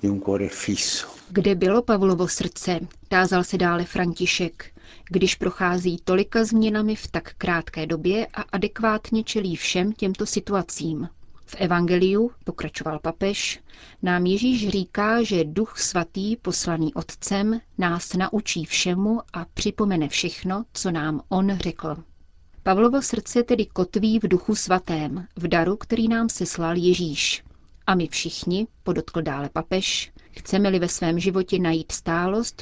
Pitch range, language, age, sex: 170-210 Hz, Czech, 30-49, female